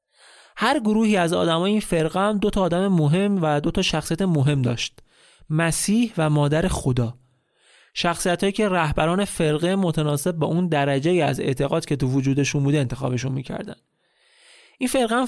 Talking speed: 155 wpm